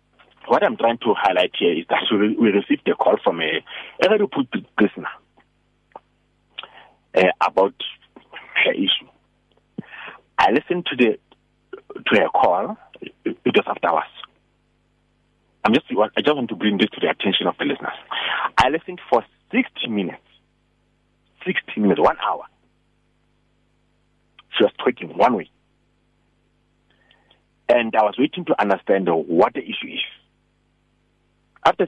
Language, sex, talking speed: English, male, 130 wpm